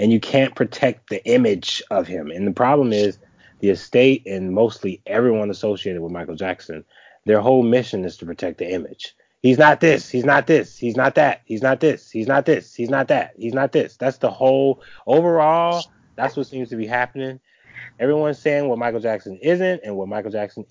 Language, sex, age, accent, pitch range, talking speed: English, male, 20-39, American, 100-135 Hz, 205 wpm